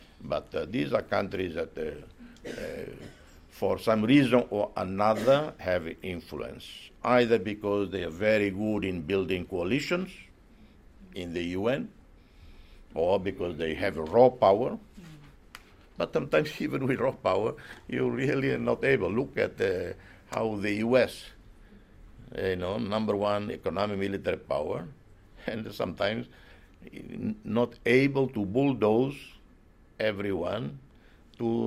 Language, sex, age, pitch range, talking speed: English, male, 60-79, 90-125 Hz, 125 wpm